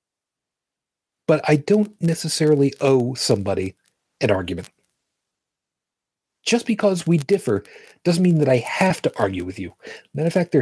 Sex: male